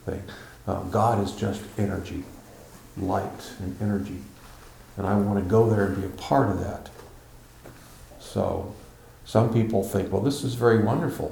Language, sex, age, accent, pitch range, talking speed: English, male, 50-69, American, 100-120 Hz, 155 wpm